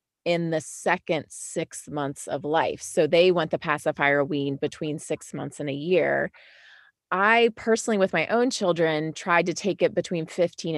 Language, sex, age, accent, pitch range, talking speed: English, female, 30-49, American, 150-180 Hz, 175 wpm